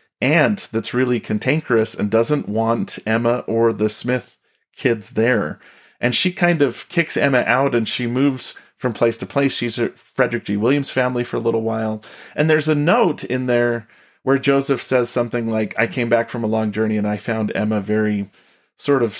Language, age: English, 40-59